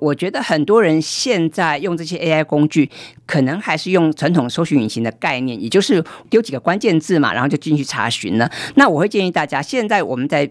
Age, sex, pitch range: 50-69, female, 135-185 Hz